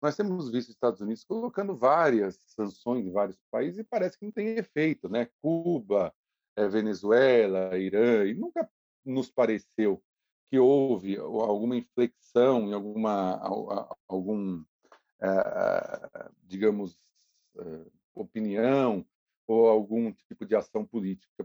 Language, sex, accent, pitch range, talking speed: Portuguese, male, Brazilian, 105-150 Hz, 115 wpm